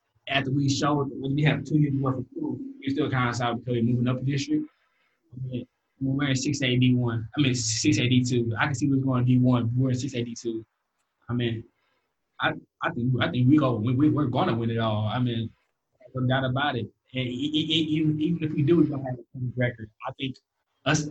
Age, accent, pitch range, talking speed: 20-39, American, 120-140 Hz, 245 wpm